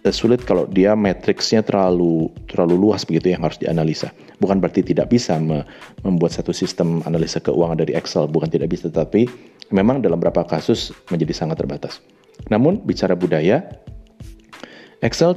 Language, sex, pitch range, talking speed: Indonesian, male, 85-110 Hz, 145 wpm